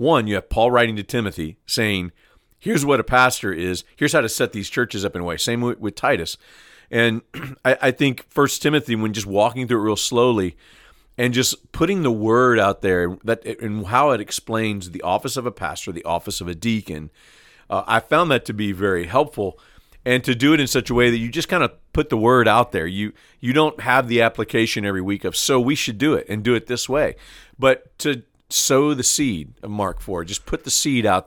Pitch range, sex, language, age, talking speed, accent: 105-125 Hz, male, English, 40-59, 230 wpm, American